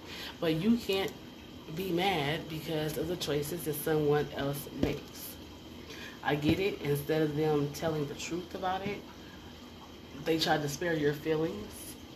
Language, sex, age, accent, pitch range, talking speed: English, female, 30-49, American, 145-170 Hz, 150 wpm